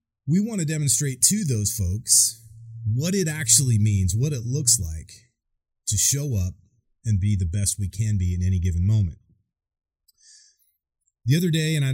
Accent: American